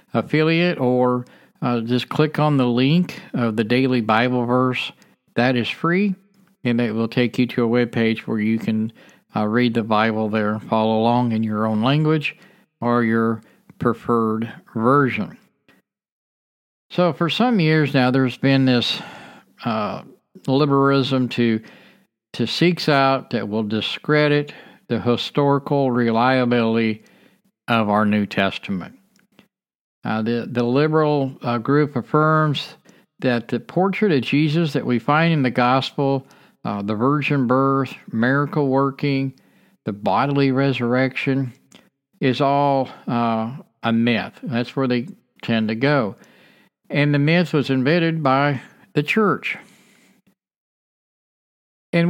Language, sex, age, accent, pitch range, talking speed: English, male, 50-69, American, 120-150 Hz, 130 wpm